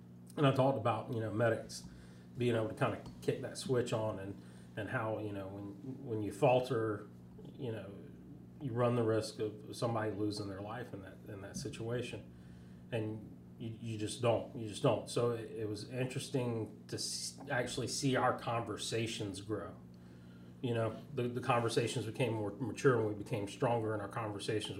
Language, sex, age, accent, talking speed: English, male, 30-49, American, 185 wpm